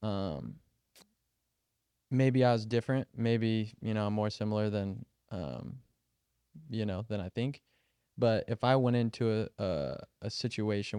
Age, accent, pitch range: 20-39, American, 105-120 Hz